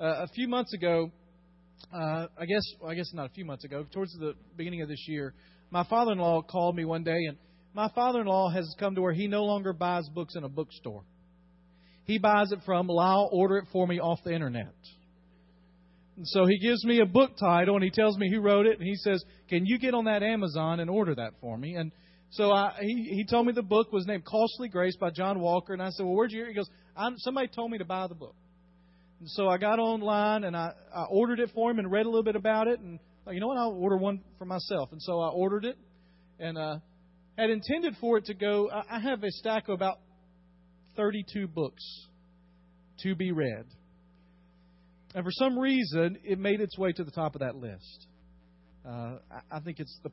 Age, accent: 40-59, American